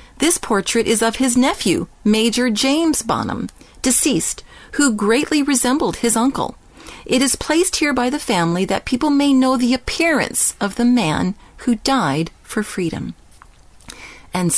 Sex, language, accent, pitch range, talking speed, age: female, English, American, 200-265 Hz, 150 wpm, 40-59